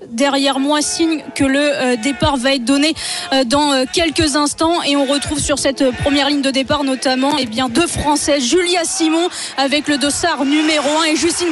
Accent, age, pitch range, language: French, 20-39, 285-360 Hz, French